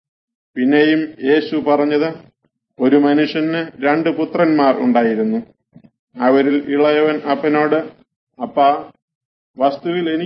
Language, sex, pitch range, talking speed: Arabic, male, 130-155 Hz, 110 wpm